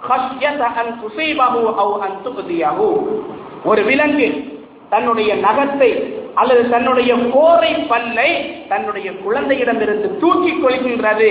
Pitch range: 235-325 Hz